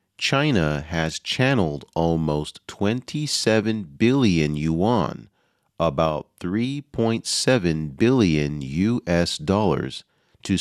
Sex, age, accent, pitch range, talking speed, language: male, 40-59, American, 75-120 Hz, 75 wpm, English